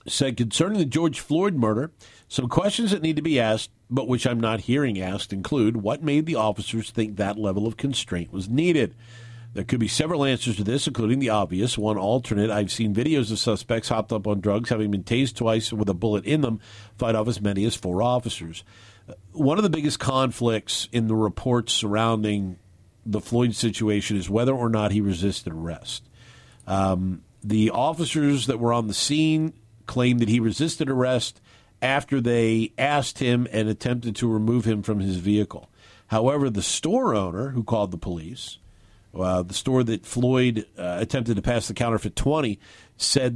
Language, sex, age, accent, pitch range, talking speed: English, male, 50-69, American, 105-125 Hz, 185 wpm